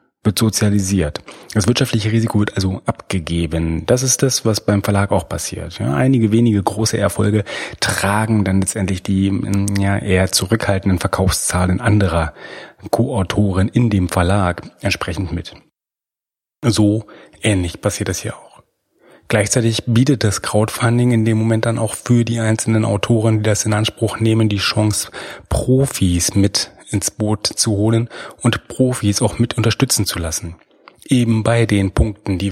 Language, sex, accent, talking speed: German, male, German, 150 wpm